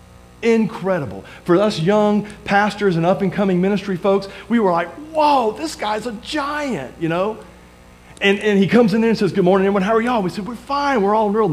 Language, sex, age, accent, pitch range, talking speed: English, male, 40-59, American, 170-230 Hz, 210 wpm